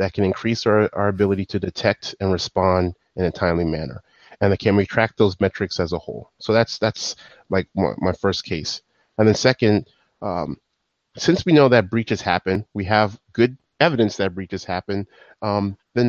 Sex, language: male, English